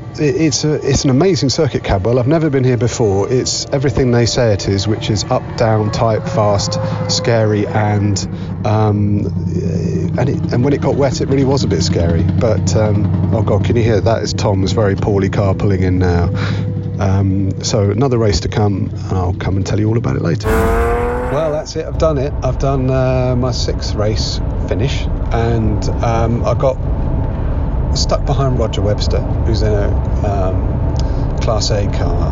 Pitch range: 95-120 Hz